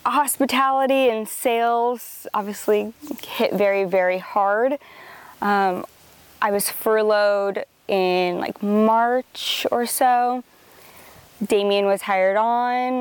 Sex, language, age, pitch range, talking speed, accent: female, English, 10-29, 195-240 Hz, 95 wpm, American